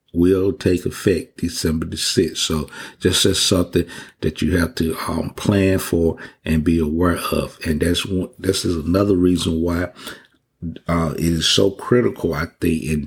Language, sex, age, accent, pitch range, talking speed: English, male, 50-69, American, 80-90 Hz, 170 wpm